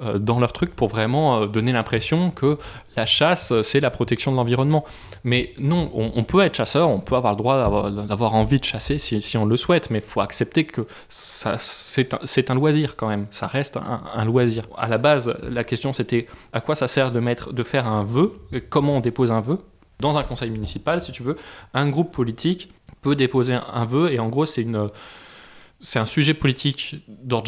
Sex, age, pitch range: male, 20-39, 110-135 Hz